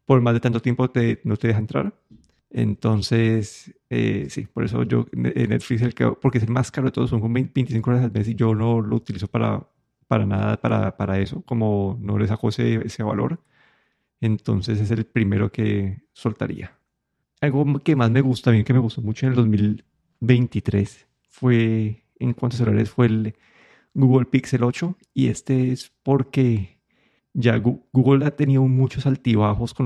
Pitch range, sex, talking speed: 110-130 Hz, male, 180 wpm